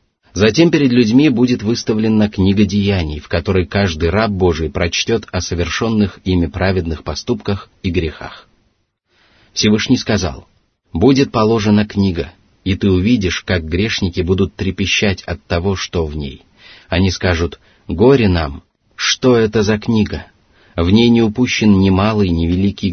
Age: 30-49